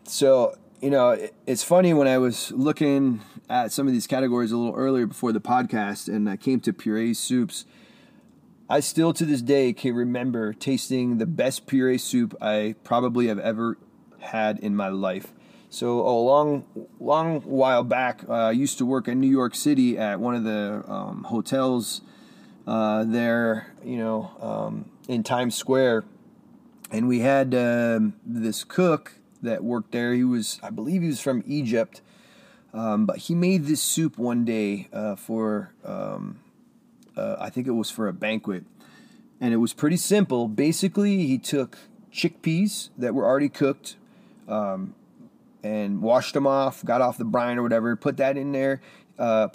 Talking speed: 170 wpm